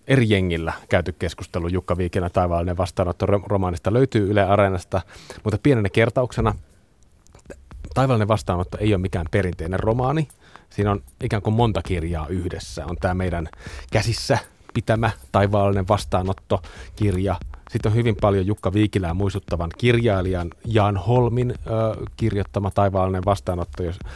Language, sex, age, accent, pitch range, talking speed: Finnish, male, 30-49, native, 90-110 Hz, 125 wpm